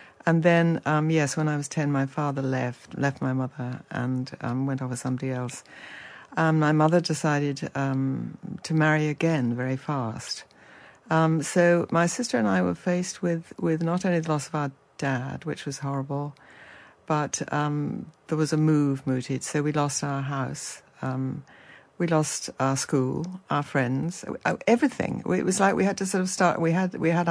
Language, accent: English, British